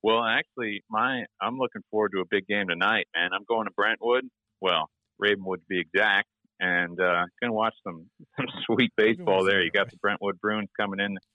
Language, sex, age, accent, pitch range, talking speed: English, male, 50-69, American, 90-105 Hz, 205 wpm